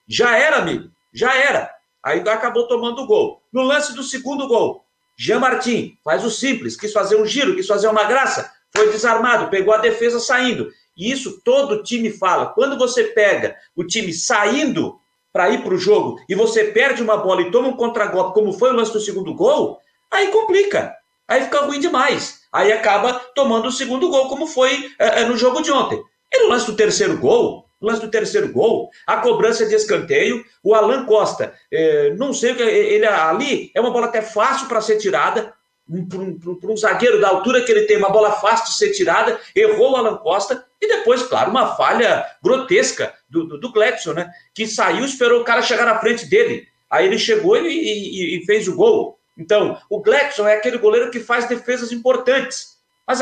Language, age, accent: Portuguese, 50-69, Brazilian